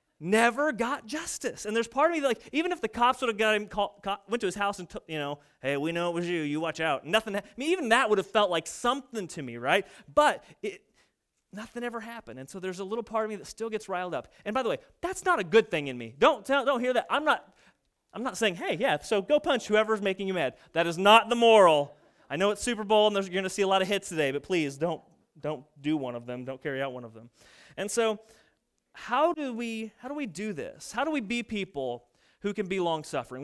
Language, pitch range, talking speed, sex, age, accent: English, 165-230 Hz, 275 wpm, male, 30-49, American